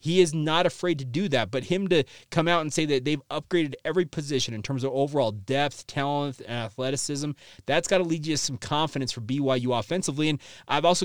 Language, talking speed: English, 225 wpm